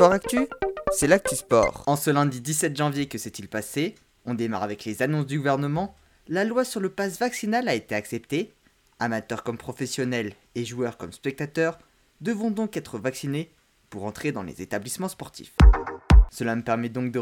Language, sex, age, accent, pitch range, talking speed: French, male, 20-39, French, 125-205 Hz, 175 wpm